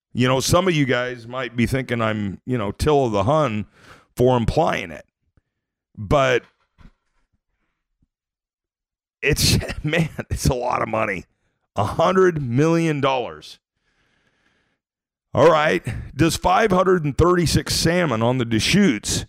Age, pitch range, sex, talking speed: 40-59, 105-140 Hz, male, 120 wpm